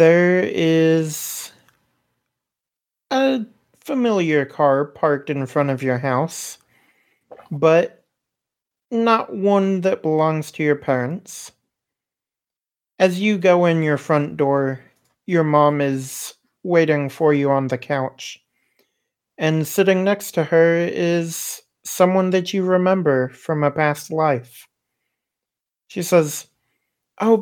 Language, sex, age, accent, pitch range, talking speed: English, male, 40-59, American, 145-185 Hz, 115 wpm